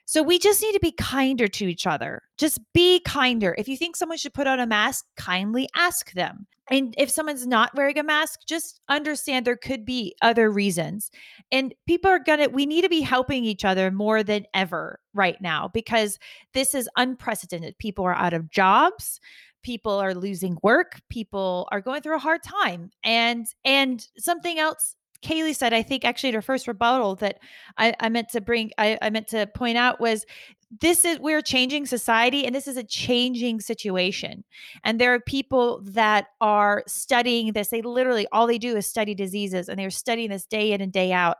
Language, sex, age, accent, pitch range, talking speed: English, female, 20-39, American, 210-300 Hz, 200 wpm